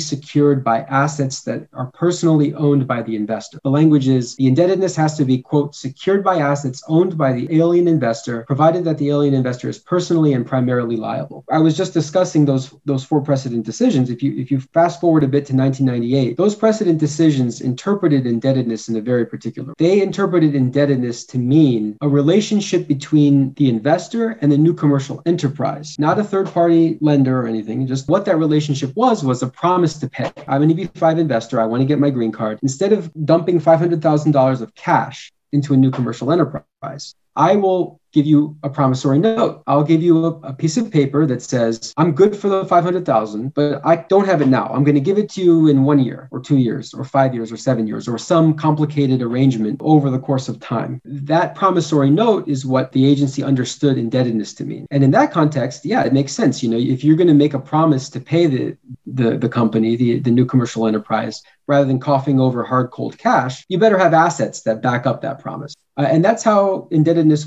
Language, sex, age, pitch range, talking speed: English, male, 30-49, 130-165 Hz, 210 wpm